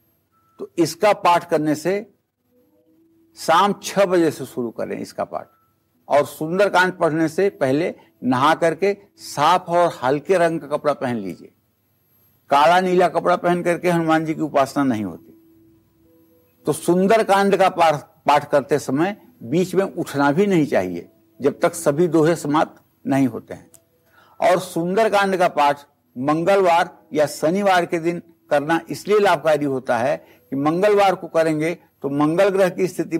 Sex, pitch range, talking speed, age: male, 115-175 Hz, 145 wpm, 60-79